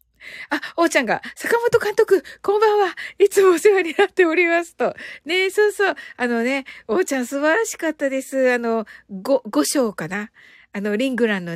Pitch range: 245-370 Hz